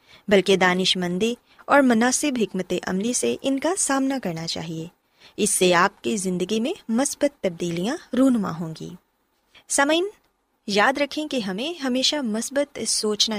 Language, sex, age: Urdu, female, 20-39